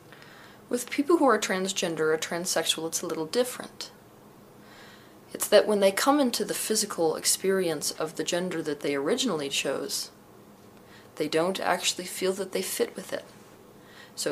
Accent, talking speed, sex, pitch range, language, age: American, 155 wpm, female, 155-205 Hz, English, 40-59